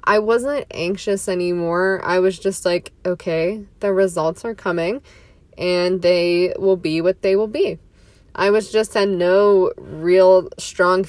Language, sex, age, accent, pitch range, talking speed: English, female, 20-39, American, 175-195 Hz, 150 wpm